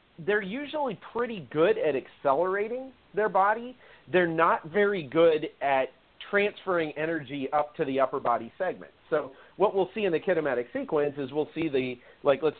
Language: English